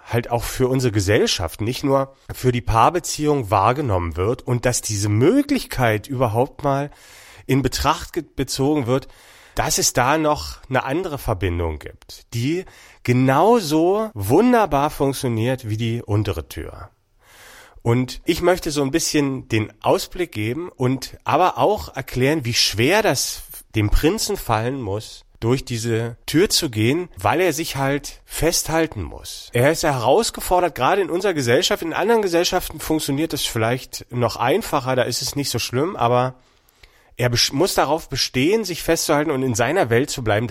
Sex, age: male, 40-59